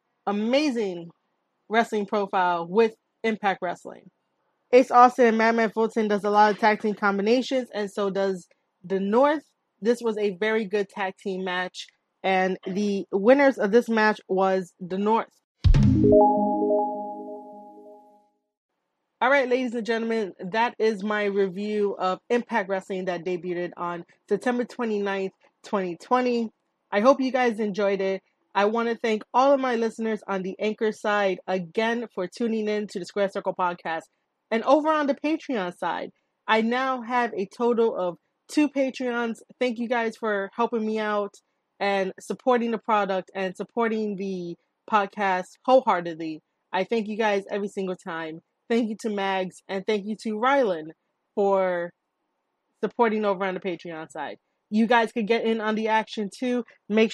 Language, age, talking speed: English, 20-39, 155 wpm